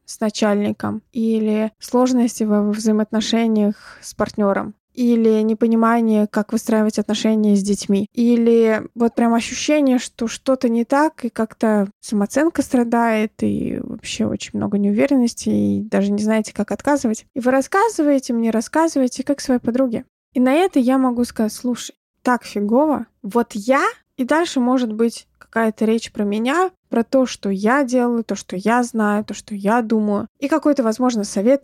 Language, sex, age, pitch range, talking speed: Russian, female, 20-39, 215-255 Hz, 155 wpm